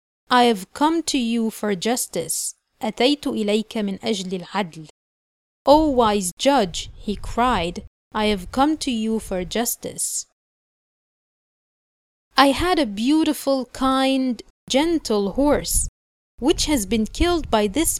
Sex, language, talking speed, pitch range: female, Arabic, 125 wpm, 205-270 Hz